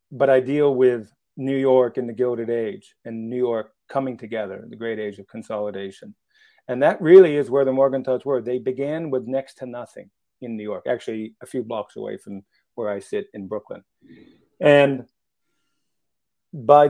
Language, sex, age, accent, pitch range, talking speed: English, male, 50-69, American, 110-135 Hz, 180 wpm